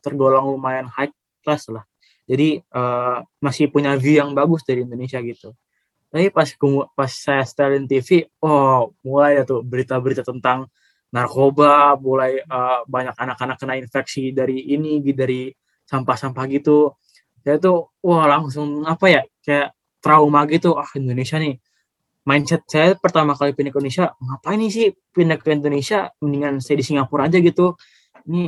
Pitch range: 125-145 Hz